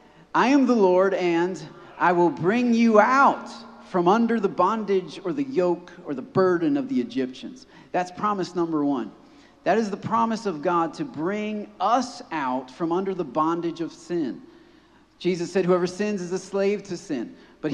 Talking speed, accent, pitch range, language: 180 wpm, American, 170-220 Hz, English